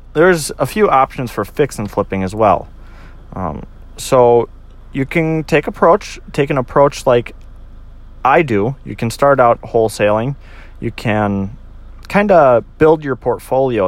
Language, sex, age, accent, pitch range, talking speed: English, male, 30-49, American, 100-135 Hz, 145 wpm